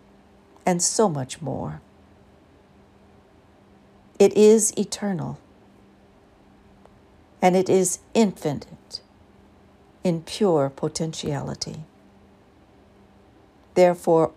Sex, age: female, 60-79